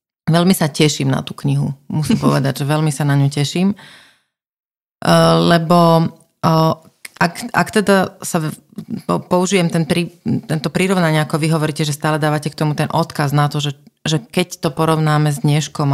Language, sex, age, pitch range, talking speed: Slovak, female, 30-49, 145-180 Hz, 160 wpm